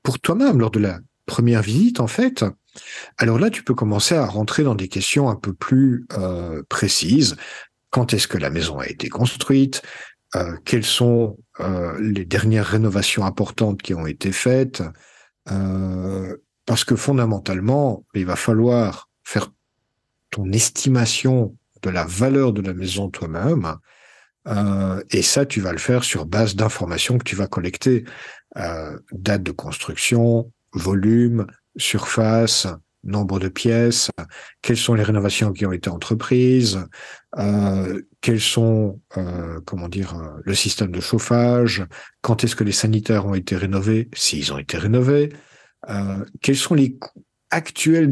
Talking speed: 150 wpm